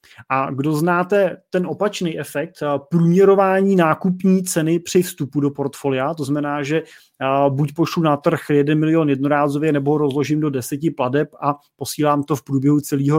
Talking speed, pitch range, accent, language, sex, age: 155 wpm, 145-170 Hz, native, Czech, male, 20-39